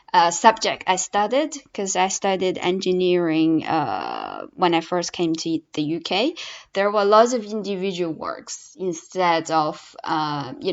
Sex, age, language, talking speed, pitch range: female, 20-39, English, 145 wpm, 180-225 Hz